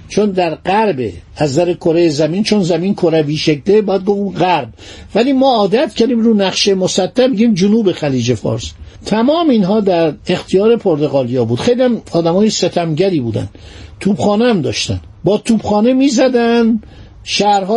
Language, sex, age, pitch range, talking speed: Persian, male, 50-69, 150-215 Hz, 150 wpm